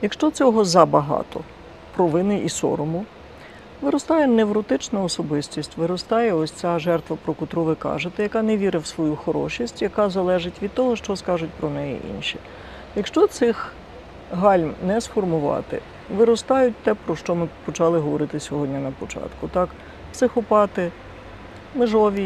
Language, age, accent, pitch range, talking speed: Ukrainian, 50-69, native, 165-220 Hz, 140 wpm